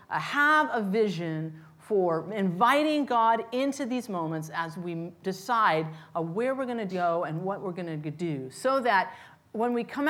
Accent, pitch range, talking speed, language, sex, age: American, 190-265 Hz, 165 wpm, English, female, 40-59